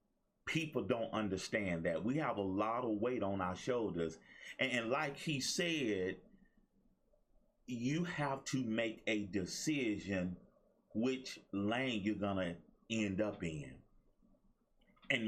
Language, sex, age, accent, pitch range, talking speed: English, male, 30-49, American, 105-140 Hz, 125 wpm